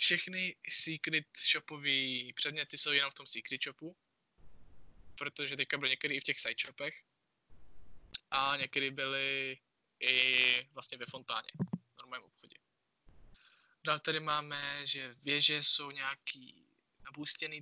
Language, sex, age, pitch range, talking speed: Czech, male, 20-39, 130-155 Hz, 125 wpm